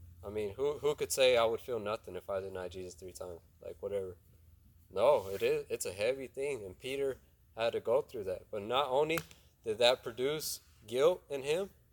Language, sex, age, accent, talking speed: English, male, 20-39, American, 205 wpm